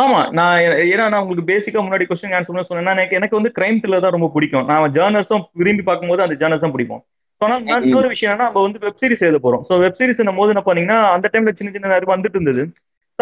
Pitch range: 165-230 Hz